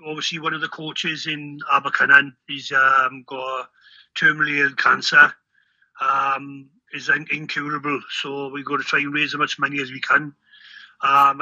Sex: male